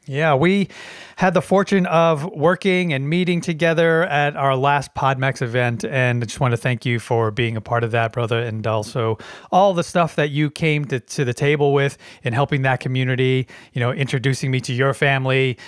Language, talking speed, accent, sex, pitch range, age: English, 205 wpm, American, male, 125-155 Hz, 30-49